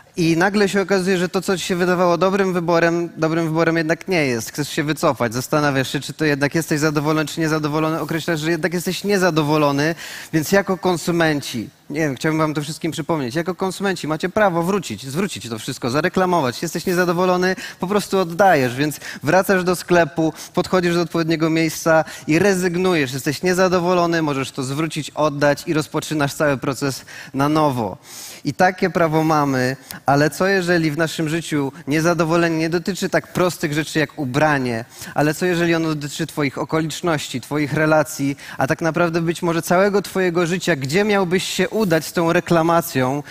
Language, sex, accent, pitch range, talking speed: Polish, male, native, 145-180 Hz, 170 wpm